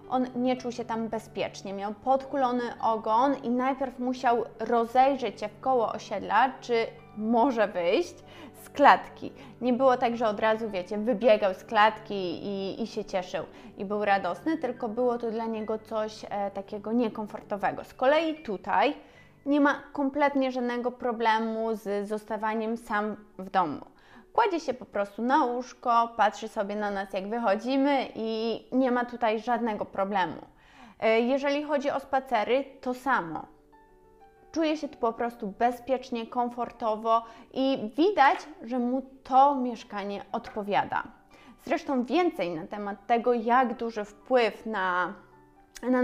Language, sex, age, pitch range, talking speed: Polish, female, 20-39, 210-255 Hz, 140 wpm